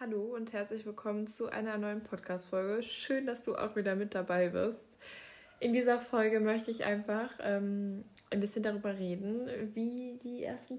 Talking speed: 165 wpm